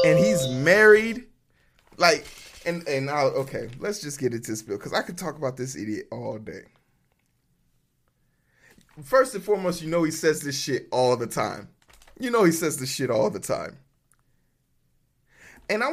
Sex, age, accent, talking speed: male, 20-39, American, 175 wpm